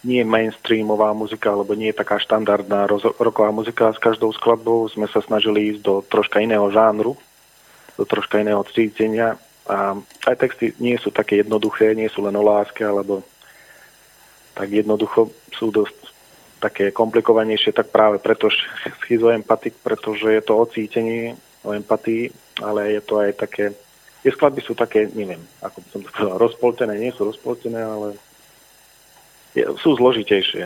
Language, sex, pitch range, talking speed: Slovak, male, 100-110 Hz, 150 wpm